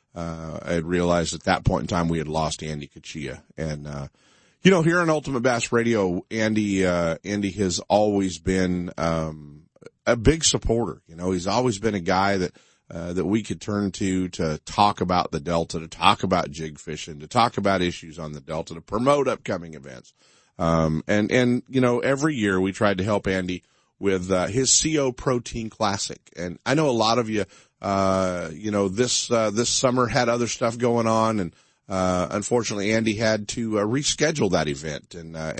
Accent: American